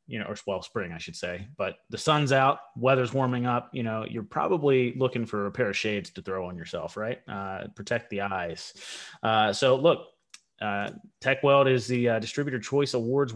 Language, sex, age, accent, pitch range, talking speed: English, male, 30-49, American, 105-125 Hz, 200 wpm